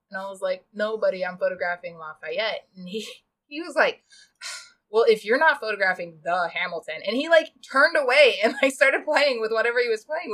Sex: female